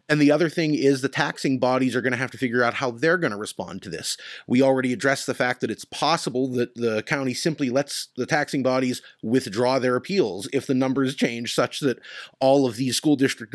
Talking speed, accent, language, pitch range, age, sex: 230 wpm, American, English, 115-145 Hz, 30-49, male